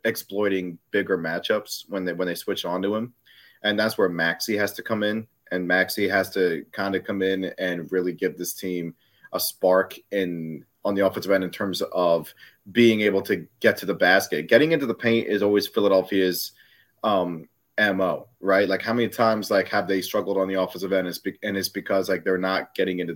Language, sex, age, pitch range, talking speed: English, male, 30-49, 90-110 Hz, 210 wpm